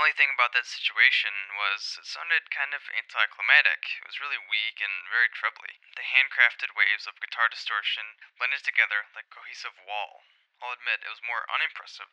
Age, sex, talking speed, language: 20-39, male, 185 wpm, English